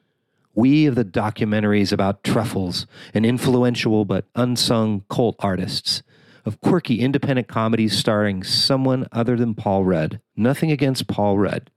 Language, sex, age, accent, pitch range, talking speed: English, male, 40-59, American, 100-125 Hz, 135 wpm